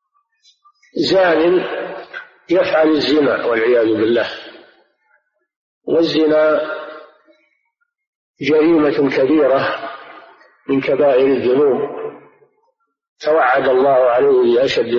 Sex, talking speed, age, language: male, 60 wpm, 50-69, Arabic